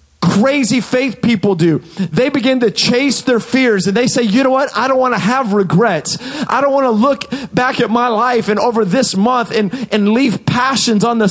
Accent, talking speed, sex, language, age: American, 220 wpm, male, English, 30-49